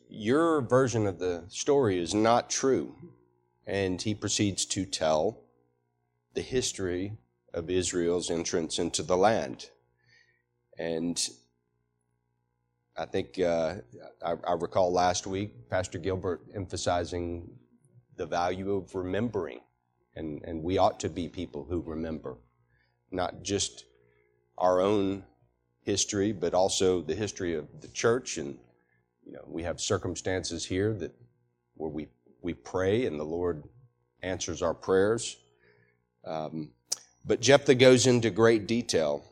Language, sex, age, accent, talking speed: English, male, 40-59, American, 125 wpm